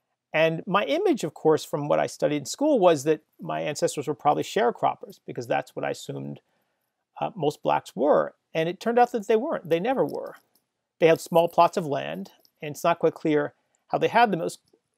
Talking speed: 210 wpm